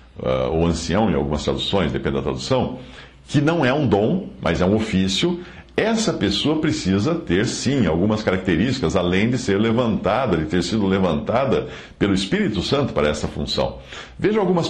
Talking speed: 165 wpm